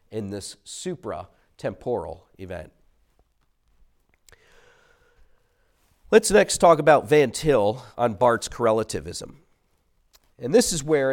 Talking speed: 90 wpm